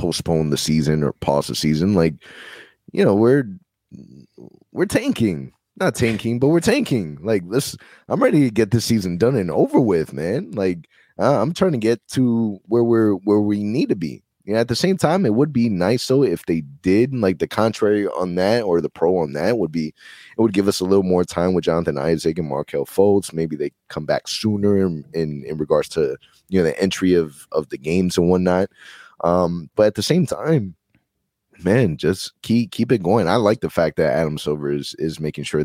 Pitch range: 80-110 Hz